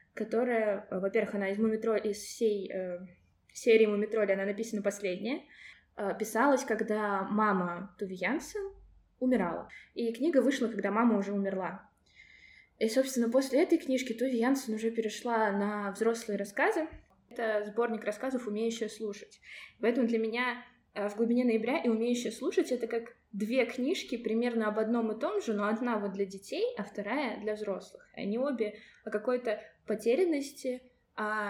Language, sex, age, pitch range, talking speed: Russian, female, 20-39, 205-250 Hz, 145 wpm